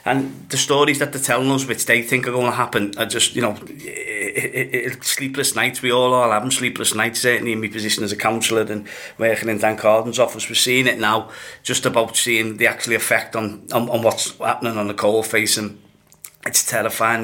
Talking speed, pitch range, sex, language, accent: 225 wpm, 110-125 Hz, male, English, British